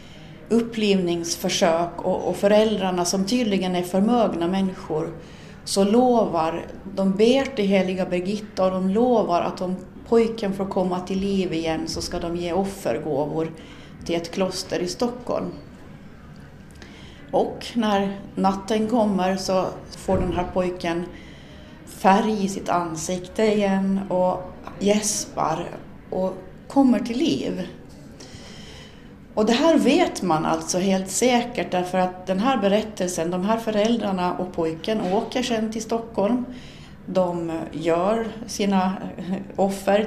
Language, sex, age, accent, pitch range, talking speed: Finnish, female, 30-49, Swedish, 180-220 Hz, 125 wpm